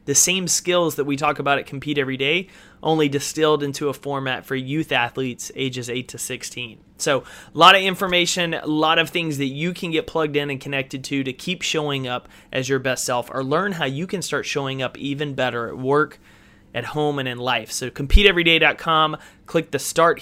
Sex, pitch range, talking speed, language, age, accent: male, 130-160 Hz, 210 wpm, English, 30-49, American